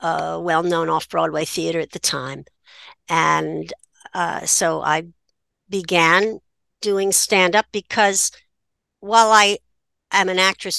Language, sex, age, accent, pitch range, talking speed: English, female, 60-79, American, 165-205 Hz, 115 wpm